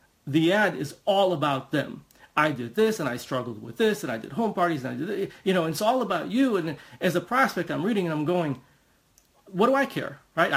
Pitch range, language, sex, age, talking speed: 145-190 Hz, English, male, 40-59, 245 wpm